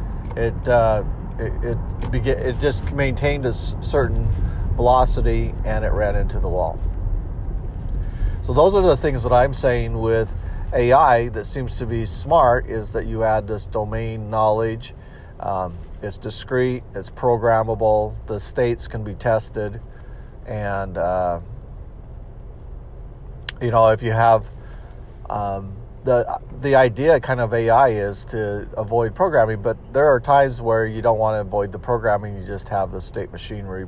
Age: 50-69